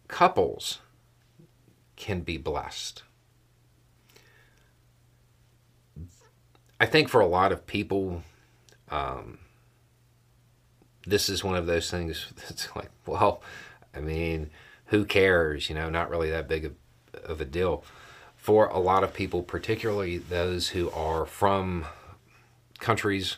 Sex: male